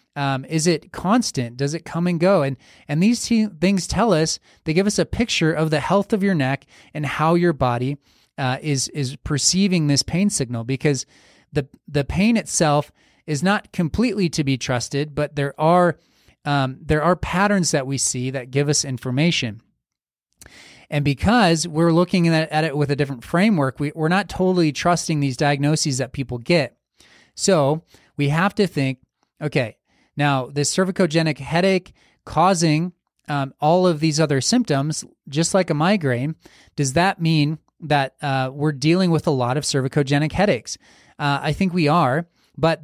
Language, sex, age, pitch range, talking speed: English, male, 30-49, 140-175 Hz, 175 wpm